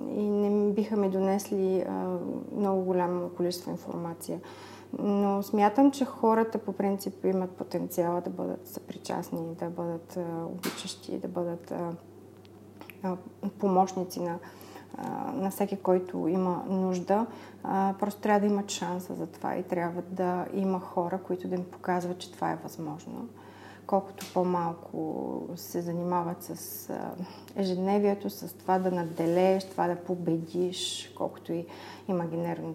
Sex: female